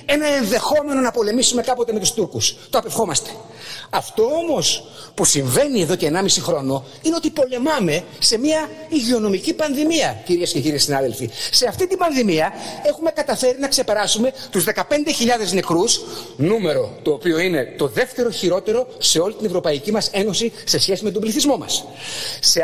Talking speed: 160 wpm